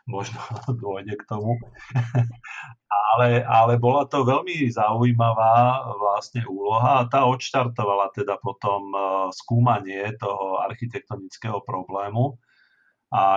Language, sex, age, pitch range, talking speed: Slovak, male, 40-59, 100-125 Hz, 95 wpm